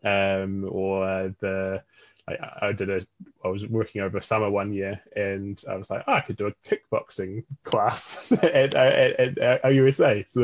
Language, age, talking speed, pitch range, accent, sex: English, 10-29, 190 wpm, 105-125 Hz, British, male